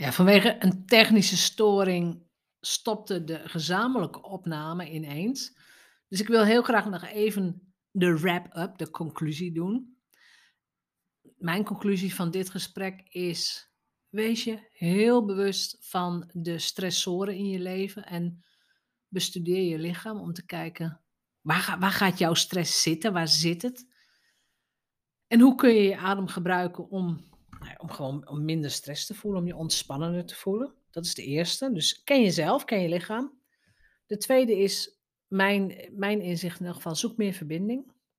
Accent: Dutch